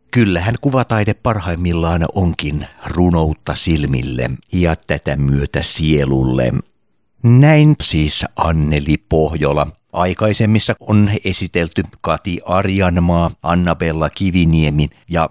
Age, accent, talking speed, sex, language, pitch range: 50-69, native, 85 wpm, male, Finnish, 75-100 Hz